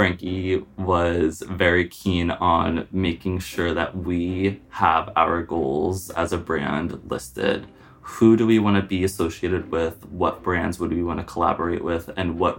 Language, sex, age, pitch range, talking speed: English, male, 20-39, 85-100 Hz, 160 wpm